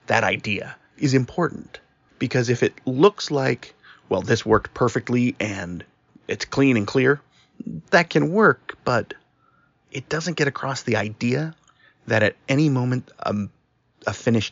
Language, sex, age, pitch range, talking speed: English, male, 30-49, 105-135 Hz, 145 wpm